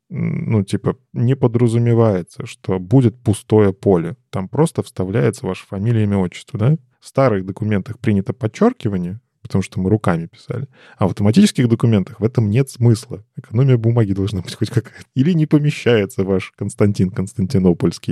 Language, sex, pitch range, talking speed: Russian, male, 100-125 Hz, 150 wpm